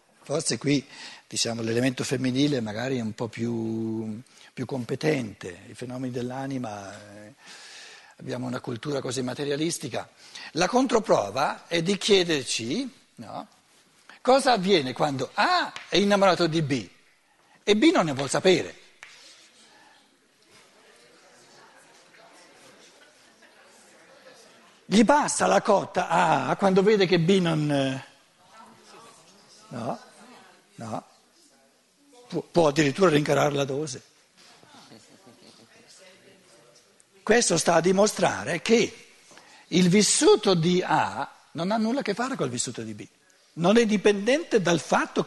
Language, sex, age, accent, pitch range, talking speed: Italian, male, 60-79, native, 130-215 Hz, 110 wpm